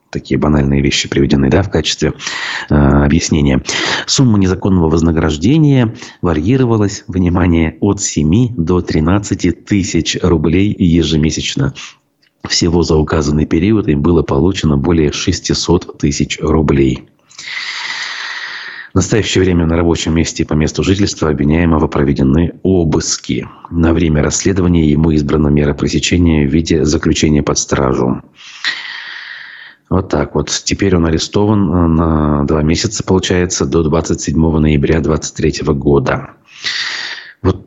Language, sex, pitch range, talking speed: Russian, male, 75-90 Hz, 115 wpm